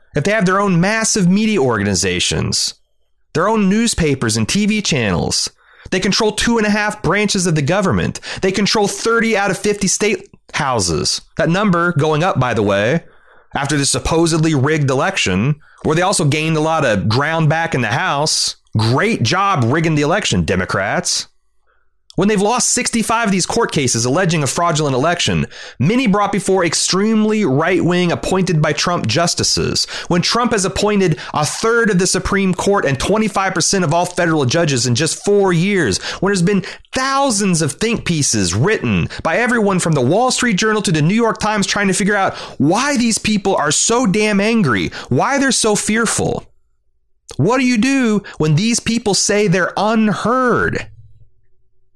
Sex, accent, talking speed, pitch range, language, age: male, American, 170 wpm, 155-210 Hz, English, 30-49